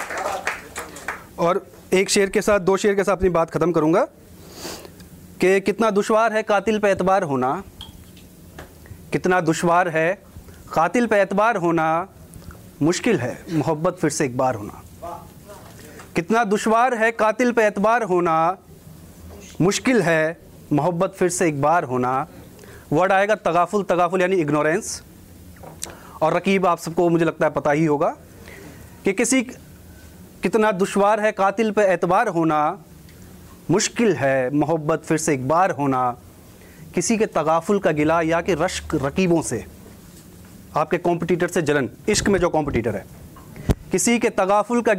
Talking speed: 140 wpm